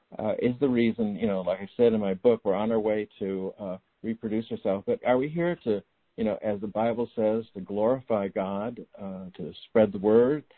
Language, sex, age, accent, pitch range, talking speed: English, male, 60-79, American, 110-135 Hz, 220 wpm